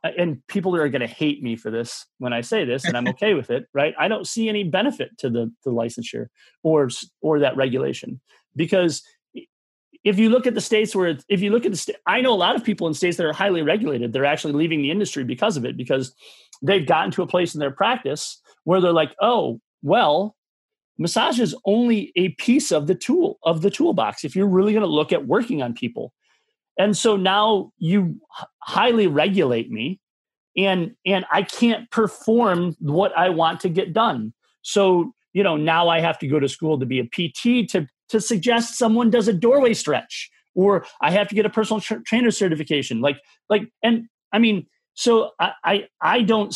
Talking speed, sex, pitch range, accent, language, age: 210 wpm, male, 155-220 Hz, American, English, 30-49